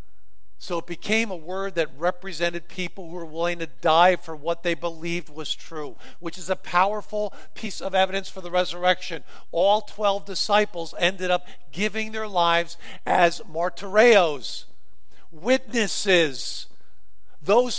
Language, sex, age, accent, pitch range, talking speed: English, male, 50-69, American, 150-230 Hz, 140 wpm